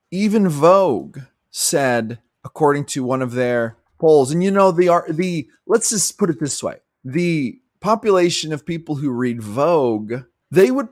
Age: 20-39